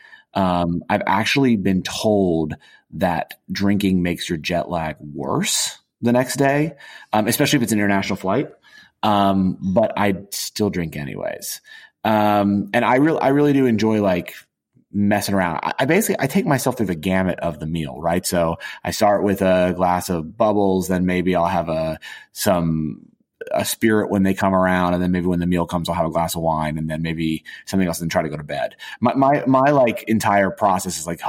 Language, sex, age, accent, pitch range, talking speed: English, male, 30-49, American, 85-105 Hz, 200 wpm